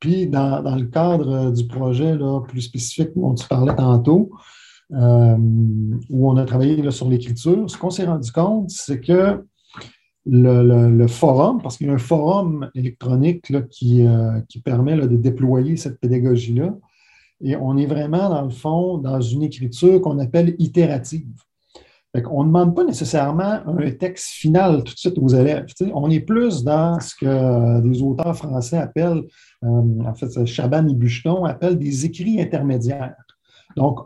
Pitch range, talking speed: 125-175 Hz, 165 wpm